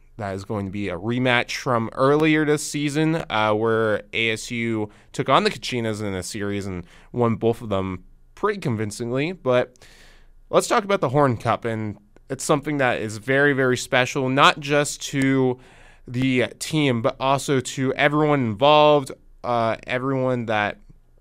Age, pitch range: 20-39, 100-140 Hz